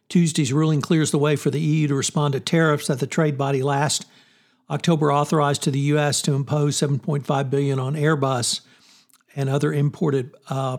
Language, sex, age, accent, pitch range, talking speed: English, male, 60-79, American, 140-160 Hz, 180 wpm